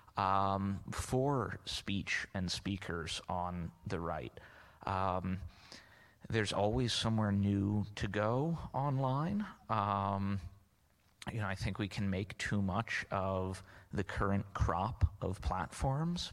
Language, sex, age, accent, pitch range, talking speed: English, male, 30-49, American, 90-110 Hz, 120 wpm